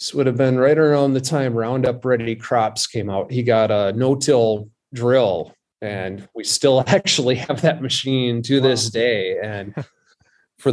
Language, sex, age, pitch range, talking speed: English, male, 30-49, 115-140 Hz, 175 wpm